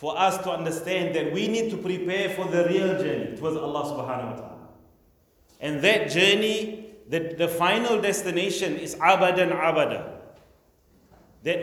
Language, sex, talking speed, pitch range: English, male, 155 wpm, 135-195 Hz